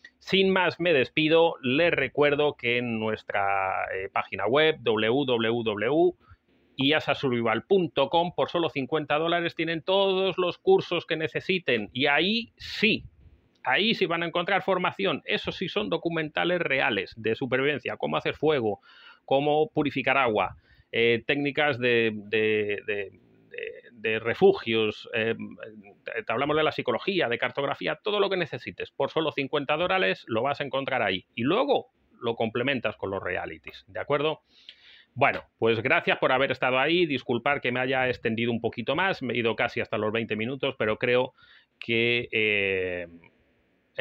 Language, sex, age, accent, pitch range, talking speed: Spanish, male, 30-49, Spanish, 115-165 Hz, 150 wpm